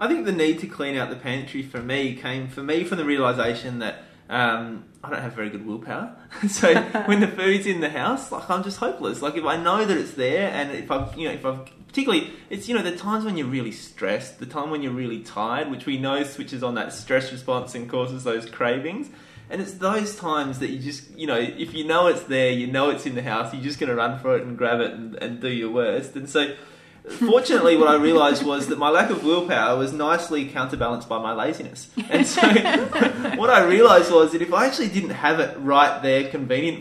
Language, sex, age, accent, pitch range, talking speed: English, male, 20-39, Australian, 130-195 Hz, 240 wpm